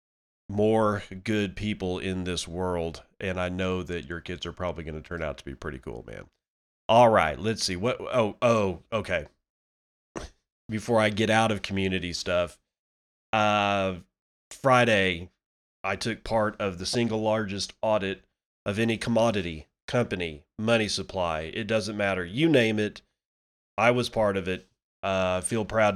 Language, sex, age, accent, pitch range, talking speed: English, male, 30-49, American, 90-115 Hz, 155 wpm